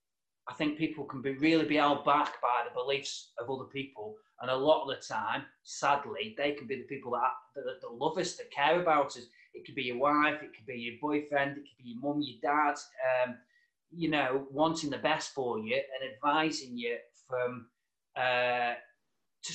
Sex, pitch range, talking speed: male, 130-165 Hz, 205 wpm